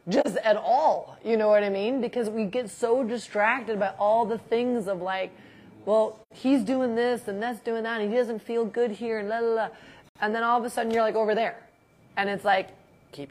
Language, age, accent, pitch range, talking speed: English, 30-49, American, 185-230 Hz, 230 wpm